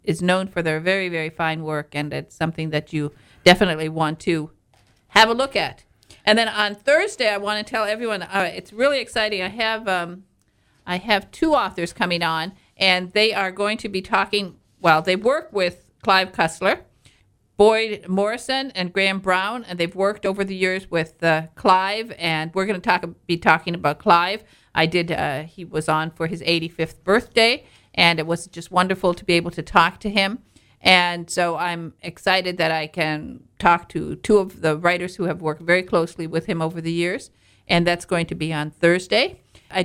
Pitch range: 165-200 Hz